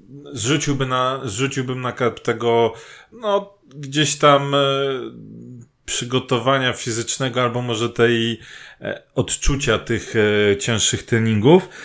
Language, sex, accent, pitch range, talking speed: Polish, male, native, 110-130 Hz, 105 wpm